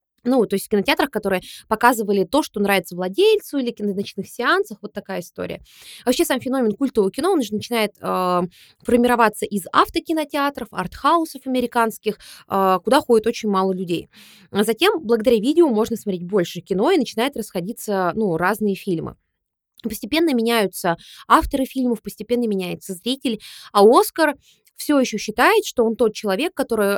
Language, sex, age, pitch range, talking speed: Russian, female, 20-39, 190-250 Hz, 155 wpm